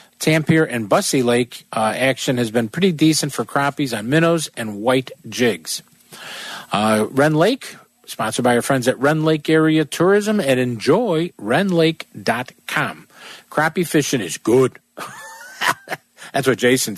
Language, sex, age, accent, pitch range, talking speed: English, male, 50-69, American, 125-170 Hz, 140 wpm